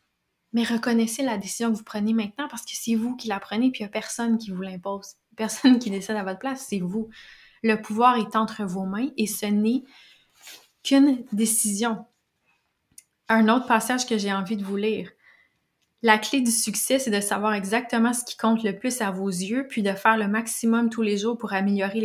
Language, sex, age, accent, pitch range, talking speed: French, female, 20-39, Canadian, 200-235 Hz, 210 wpm